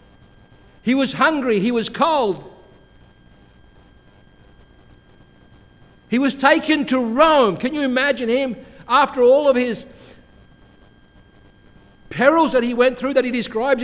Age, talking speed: 60-79, 115 wpm